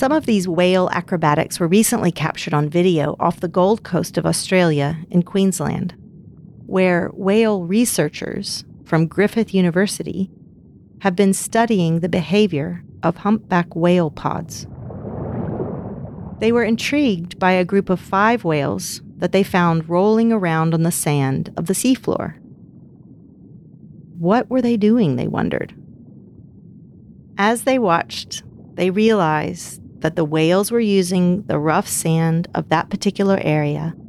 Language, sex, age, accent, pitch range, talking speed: English, female, 40-59, American, 165-205 Hz, 135 wpm